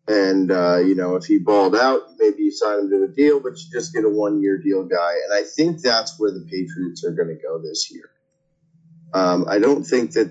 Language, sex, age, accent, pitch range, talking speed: English, male, 30-49, American, 100-165 Hz, 240 wpm